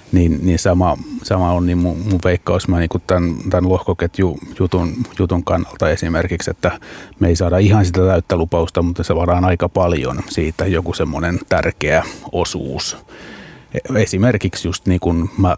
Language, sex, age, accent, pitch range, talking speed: Finnish, male, 30-49, native, 85-95 Hz, 160 wpm